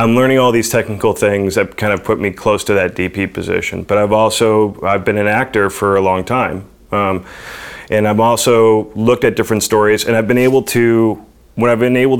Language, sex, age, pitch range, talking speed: English, male, 30-49, 100-115 Hz, 215 wpm